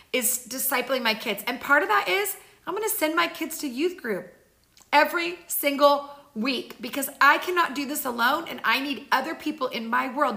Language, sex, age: English, female, 30-49